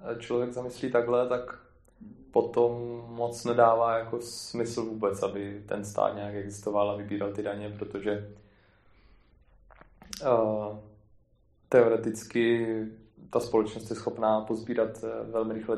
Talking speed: 110 wpm